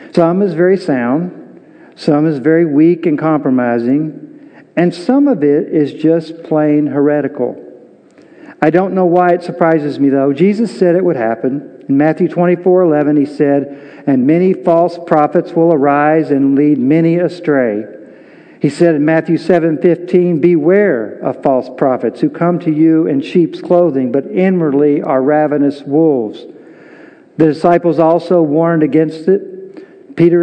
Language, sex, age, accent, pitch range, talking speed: English, male, 50-69, American, 155-180 Hz, 145 wpm